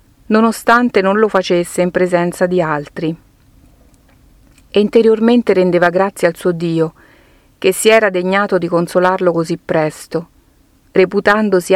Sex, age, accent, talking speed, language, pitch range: female, 40-59, native, 120 wpm, Italian, 170-205 Hz